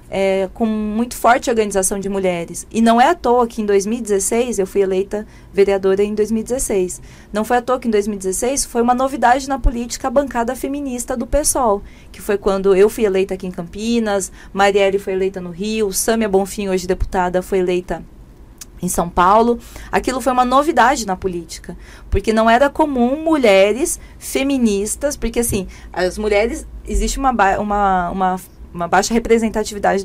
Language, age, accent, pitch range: Portuguese, 20-39, Brazilian, 190-240 Hz